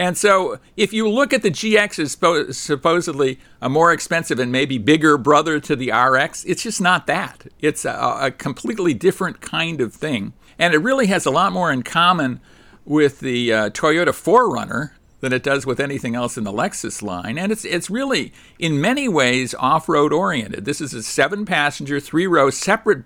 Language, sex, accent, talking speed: English, male, American, 190 wpm